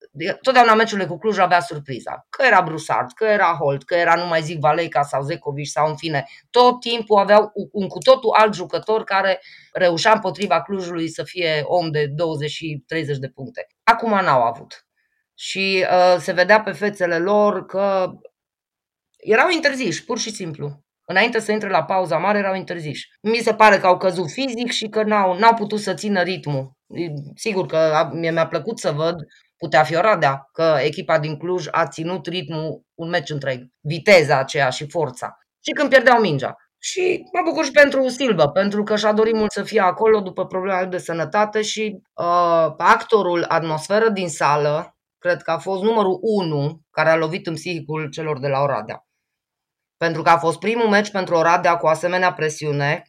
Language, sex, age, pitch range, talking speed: Romanian, female, 20-39, 160-215 Hz, 180 wpm